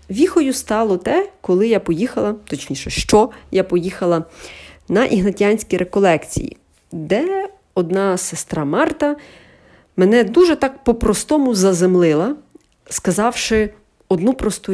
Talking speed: 100 wpm